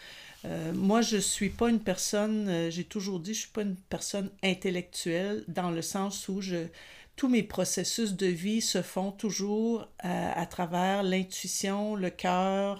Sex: female